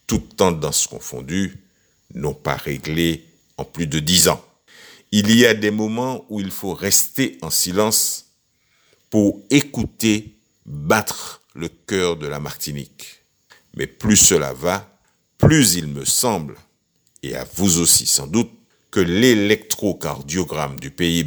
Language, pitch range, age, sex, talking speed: French, 80-110 Hz, 60-79, male, 135 wpm